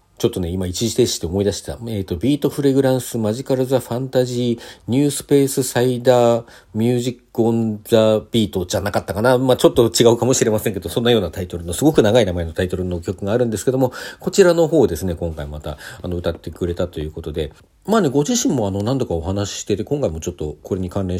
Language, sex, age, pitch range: Japanese, male, 40-59, 90-125 Hz